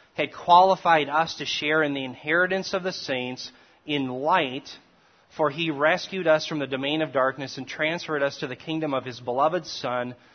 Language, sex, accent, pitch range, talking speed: English, male, American, 135-165 Hz, 185 wpm